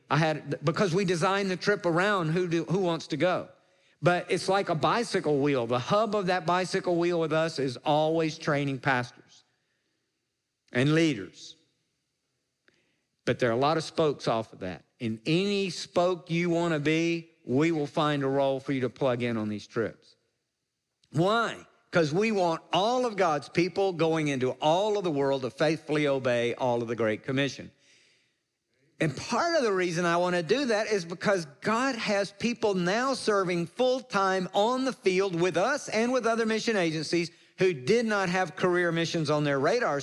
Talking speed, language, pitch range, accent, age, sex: 185 wpm, English, 145-190 Hz, American, 50-69, male